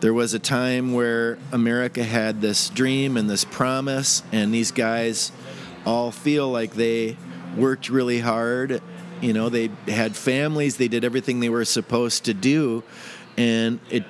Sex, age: male, 40-59